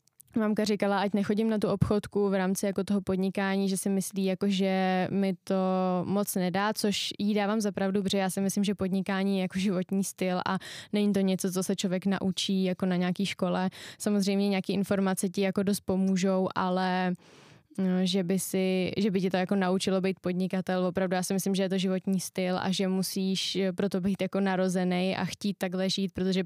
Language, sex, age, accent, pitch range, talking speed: Czech, female, 10-29, native, 190-205 Hz, 195 wpm